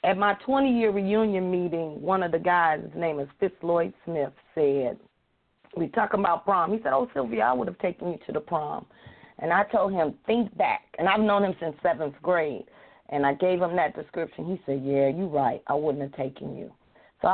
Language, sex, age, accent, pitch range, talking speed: English, female, 40-59, American, 145-175 Hz, 220 wpm